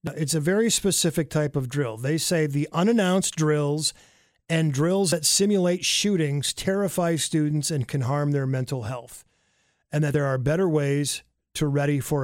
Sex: male